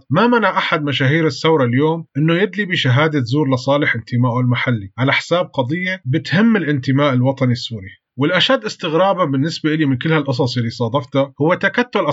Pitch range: 125-160 Hz